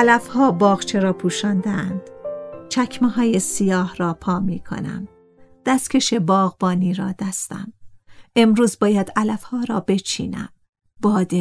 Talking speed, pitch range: 120 wpm, 185-230 Hz